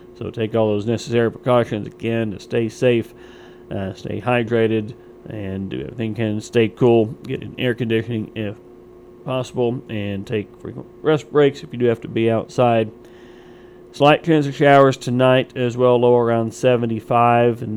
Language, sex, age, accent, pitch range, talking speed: English, male, 40-59, American, 115-130 Hz, 165 wpm